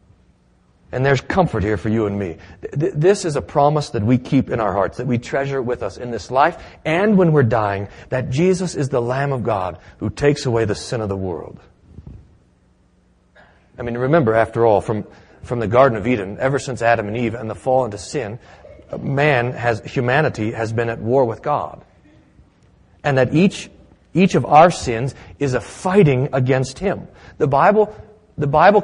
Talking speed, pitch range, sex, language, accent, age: 190 wpm, 115-160 Hz, male, English, American, 40-59